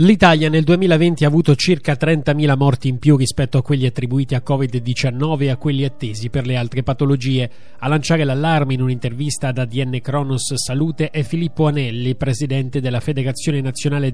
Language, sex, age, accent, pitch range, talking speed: Italian, male, 30-49, native, 130-155 Hz, 170 wpm